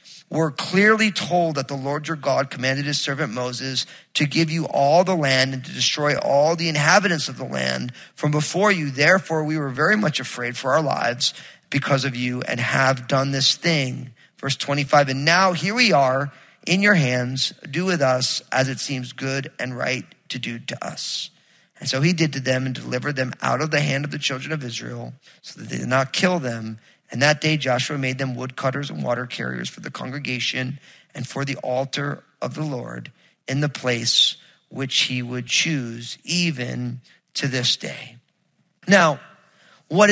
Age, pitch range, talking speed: 40-59, 130-165 Hz, 190 wpm